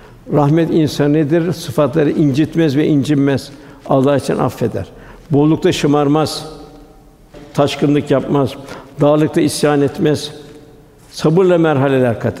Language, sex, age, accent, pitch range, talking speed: Turkish, male, 60-79, native, 140-160 Hz, 90 wpm